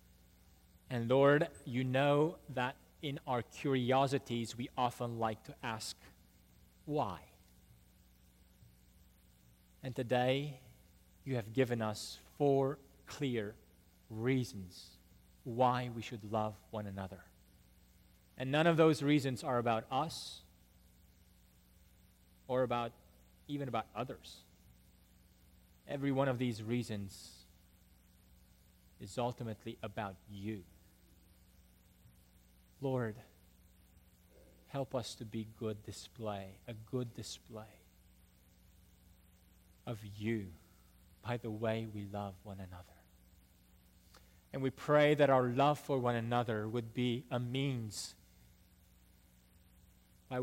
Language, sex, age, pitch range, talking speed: English, male, 30-49, 90-130 Hz, 100 wpm